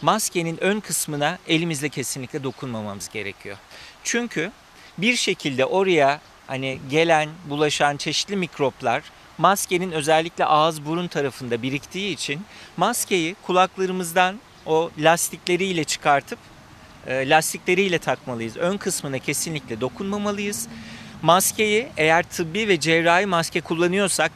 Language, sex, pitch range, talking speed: Turkish, male, 140-185 Hz, 105 wpm